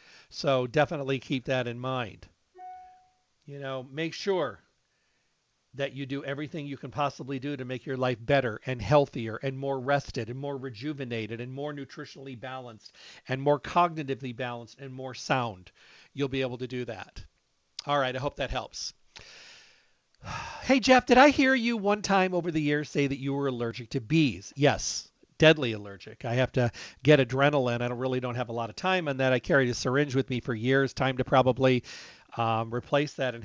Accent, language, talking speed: American, English, 190 wpm